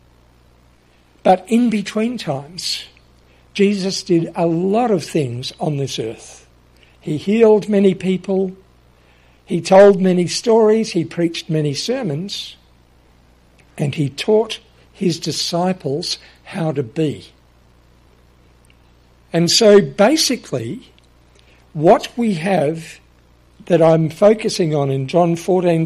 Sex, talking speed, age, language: male, 105 wpm, 60-79, English